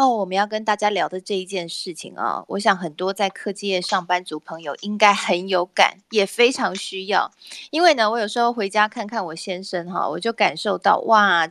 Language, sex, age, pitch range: Chinese, female, 20-39, 180-245 Hz